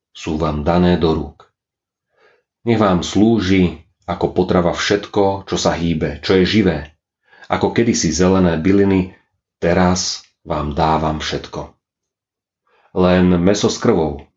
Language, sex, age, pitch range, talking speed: Slovak, male, 40-59, 85-100 Hz, 120 wpm